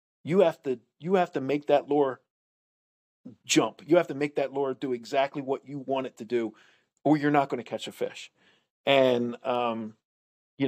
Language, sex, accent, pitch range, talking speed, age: English, male, American, 130-165 Hz, 195 wpm, 40-59